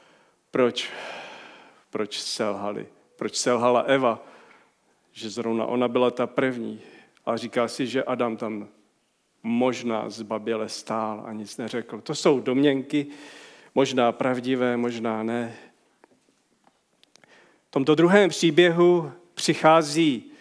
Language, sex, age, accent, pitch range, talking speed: Czech, male, 40-59, native, 120-160 Hz, 105 wpm